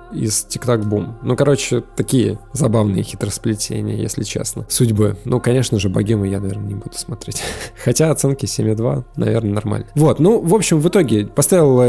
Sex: male